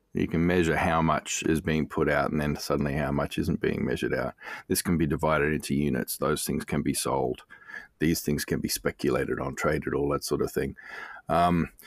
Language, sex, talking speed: English, male, 210 wpm